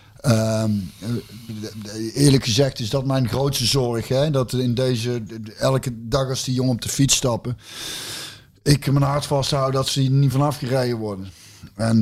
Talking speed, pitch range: 185 wpm, 105-120 Hz